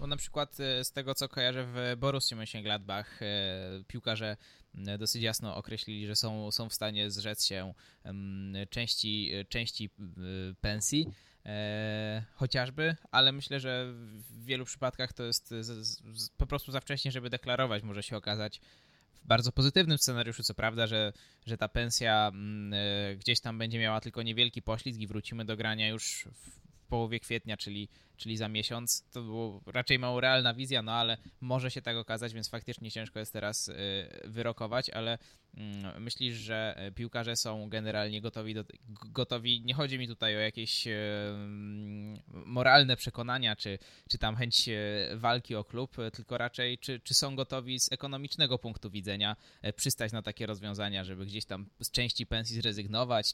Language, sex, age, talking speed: Polish, male, 20-39, 150 wpm